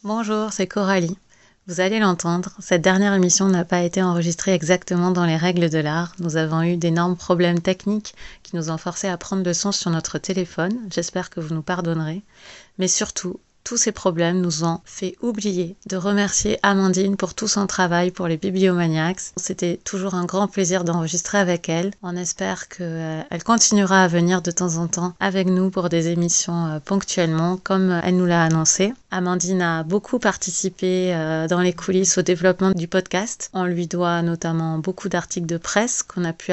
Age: 30-49